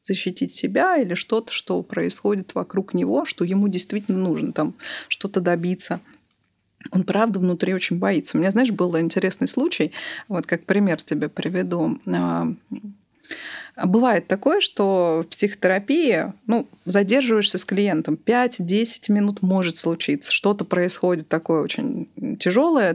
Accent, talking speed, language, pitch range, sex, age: native, 130 wpm, Russian, 175-225 Hz, female, 30-49